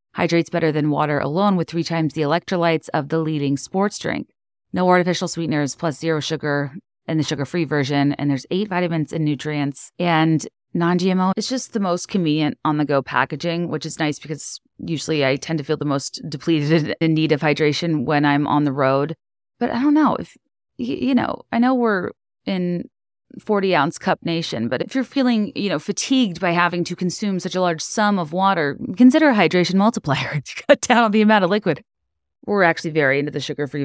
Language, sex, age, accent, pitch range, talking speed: English, female, 30-49, American, 150-195 Hz, 195 wpm